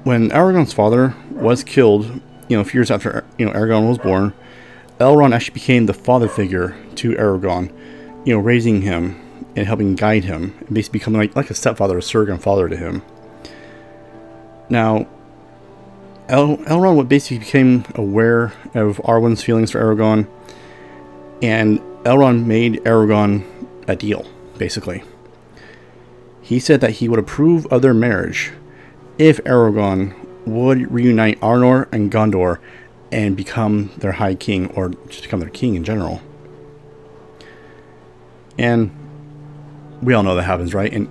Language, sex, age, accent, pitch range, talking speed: English, male, 30-49, American, 95-125 Hz, 145 wpm